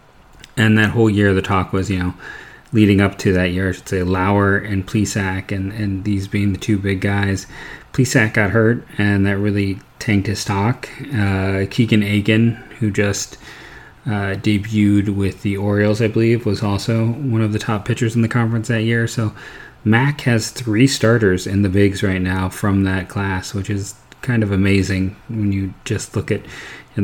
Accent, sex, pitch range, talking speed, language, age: American, male, 95-110 Hz, 190 wpm, English, 30-49